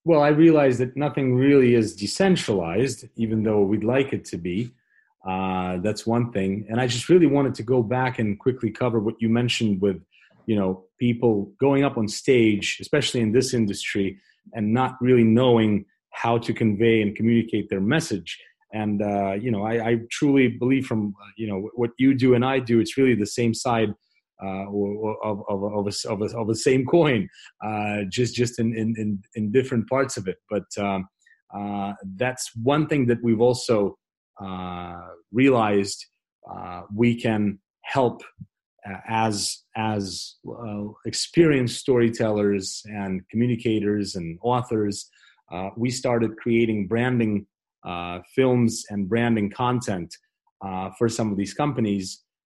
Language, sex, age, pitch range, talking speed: English, male, 30-49, 100-125 Hz, 160 wpm